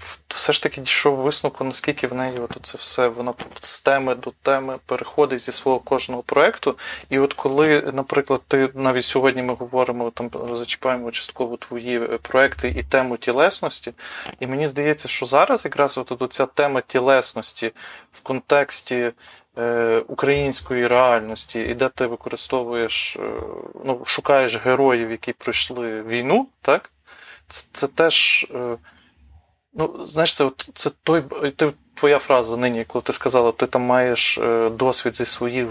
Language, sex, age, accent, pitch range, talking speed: Ukrainian, male, 20-39, native, 120-140 Hz, 145 wpm